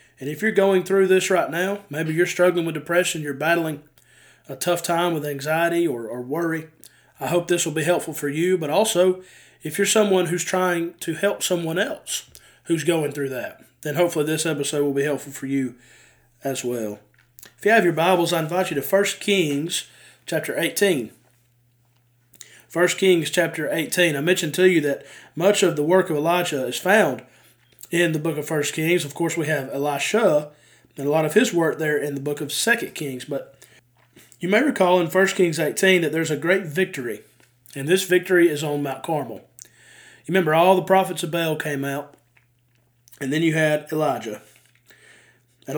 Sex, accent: male, American